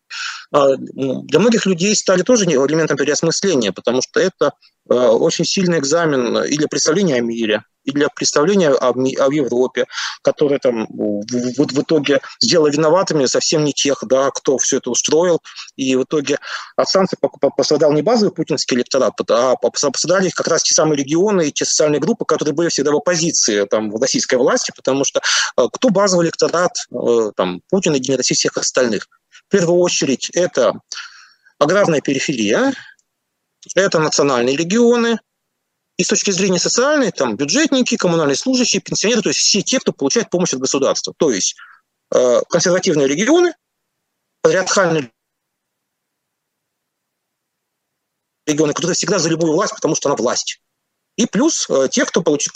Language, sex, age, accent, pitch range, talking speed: Russian, male, 30-49, native, 140-200 Hz, 150 wpm